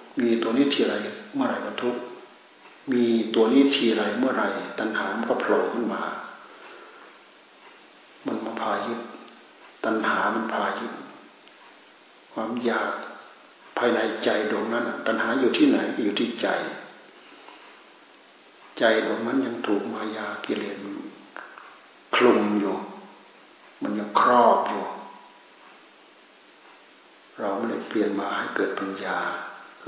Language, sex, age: Thai, male, 60-79